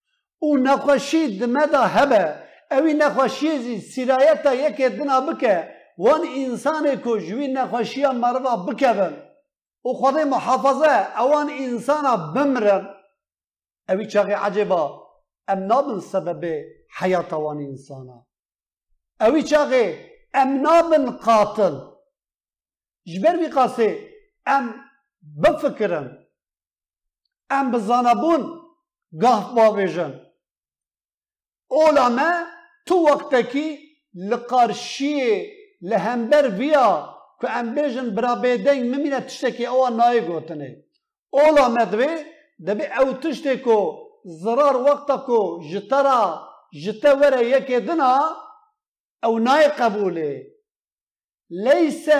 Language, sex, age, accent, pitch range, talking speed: Turkish, male, 50-69, native, 215-295 Hz, 85 wpm